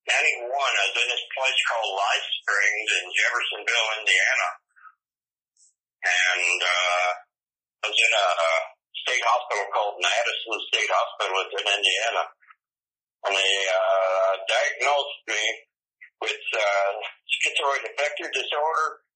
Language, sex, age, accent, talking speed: English, male, 60-79, American, 115 wpm